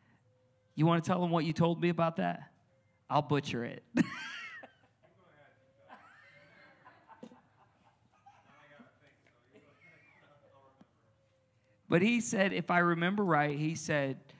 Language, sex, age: English, male, 40-59